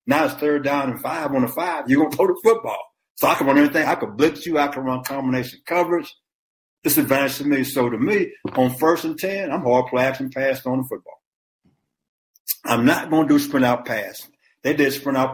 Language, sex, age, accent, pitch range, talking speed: English, male, 60-79, American, 130-180 Hz, 220 wpm